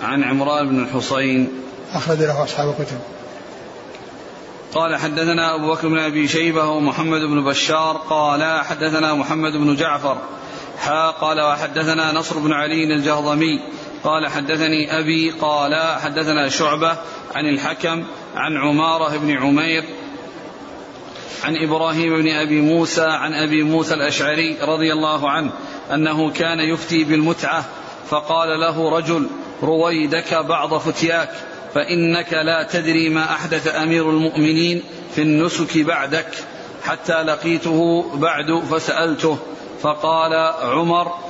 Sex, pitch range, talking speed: male, 155-165 Hz, 115 wpm